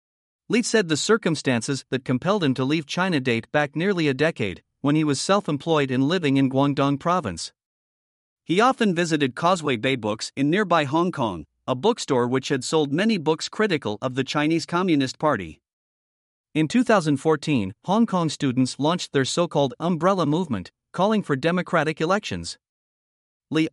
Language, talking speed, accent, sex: English, 155 wpm, American, male